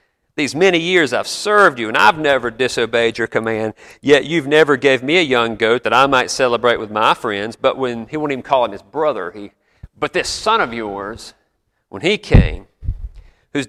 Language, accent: English, American